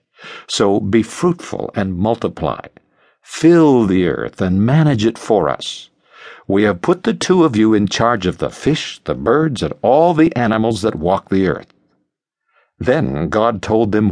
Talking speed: 165 wpm